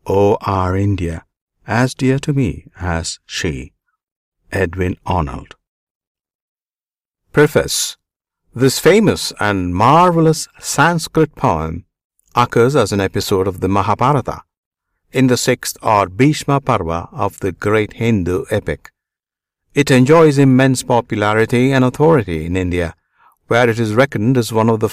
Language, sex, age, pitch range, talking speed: Hindi, male, 60-79, 100-140 Hz, 125 wpm